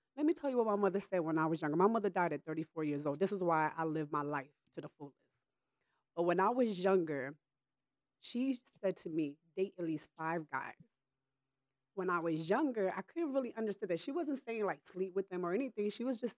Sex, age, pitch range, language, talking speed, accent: female, 30-49, 155-205 Hz, English, 235 wpm, American